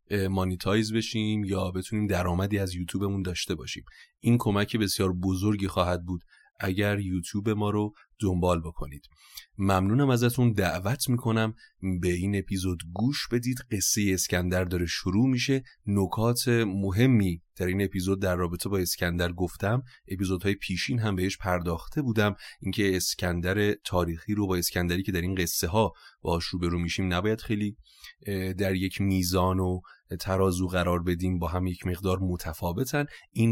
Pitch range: 90-110 Hz